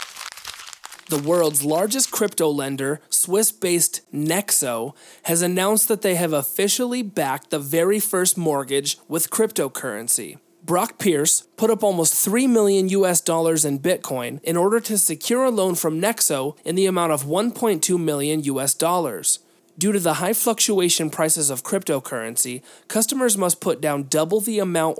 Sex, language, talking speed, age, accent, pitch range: male, English, 150 wpm, 30-49, American, 150-200 Hz